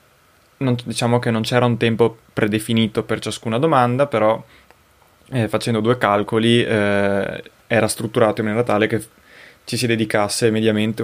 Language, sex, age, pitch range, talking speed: Italian, male, 20-39, 110-125 Hz, 145 wpm